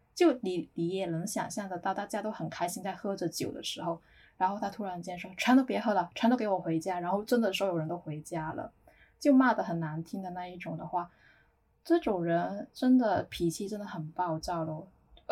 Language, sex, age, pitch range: Chinese, female, 10-29, 175-210 Hz